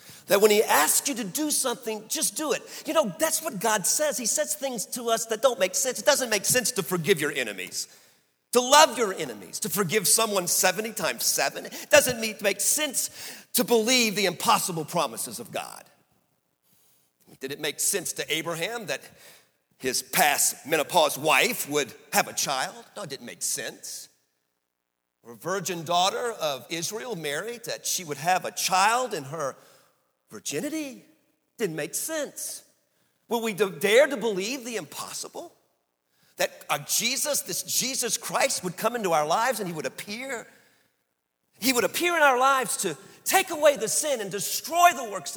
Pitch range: 175-275 Hz